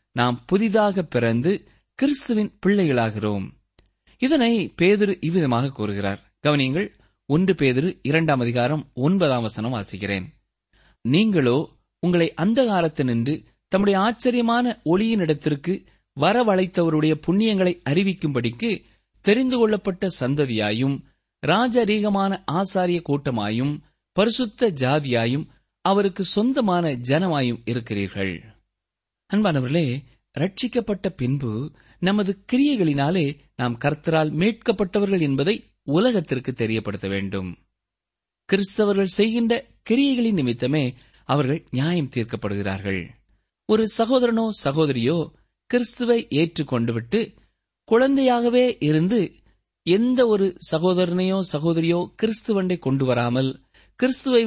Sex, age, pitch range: male, 20-39, 130-210 Hz